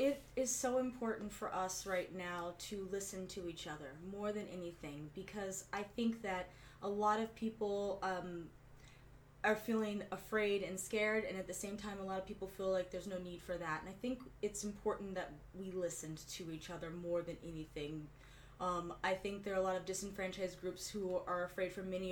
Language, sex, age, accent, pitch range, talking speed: English, female, 20-39, American, 165-195 Hz, 205 wpm